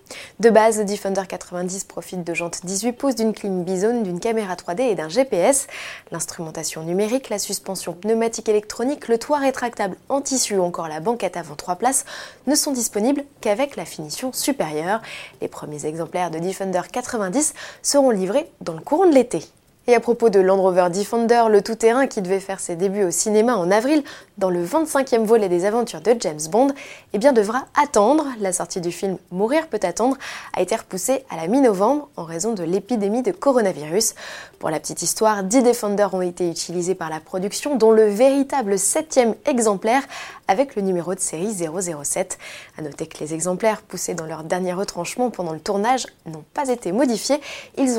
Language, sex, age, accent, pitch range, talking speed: French, female, 20-39, French, 185-250 Hz, 185 wpm